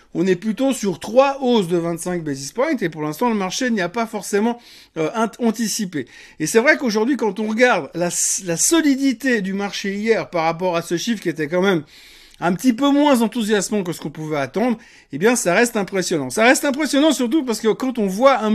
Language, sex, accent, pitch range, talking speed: French, male, French, 170-235 Hz, 220 wpm